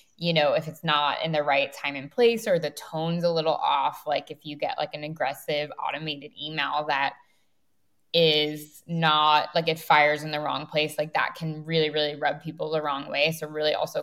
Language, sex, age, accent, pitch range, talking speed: English, female, 10-29, American, 150-170 Hz, 210 wpm